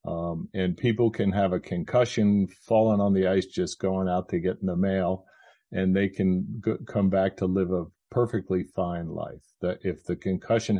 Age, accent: 40-59, American